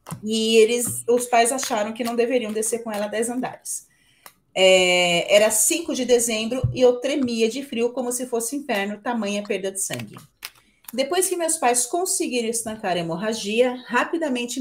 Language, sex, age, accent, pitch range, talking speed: Portuguese, female, 30-49, Brazilian, 210-260 Hz, 155 wpm